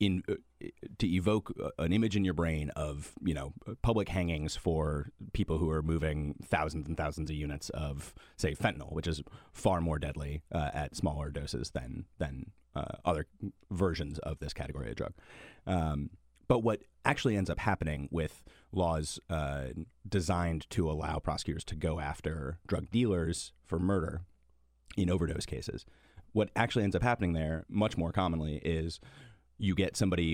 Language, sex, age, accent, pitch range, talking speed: English, male, 30-49, American, 75-95 Hz, 160 wpm